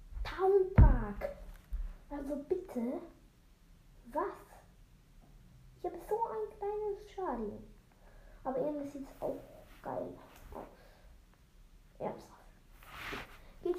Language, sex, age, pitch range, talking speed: German, female, 10-29, 210-335 Hz, 85 wpm